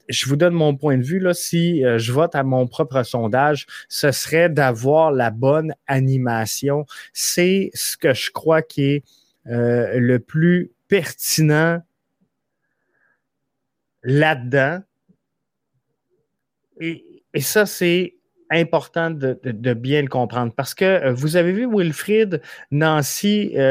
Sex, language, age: male, French, 30-49